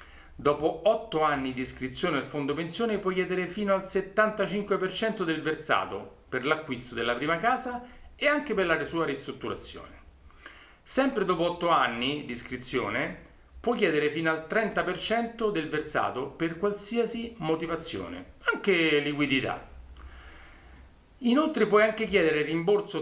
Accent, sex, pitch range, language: native, male, 120-195 Hz, Italian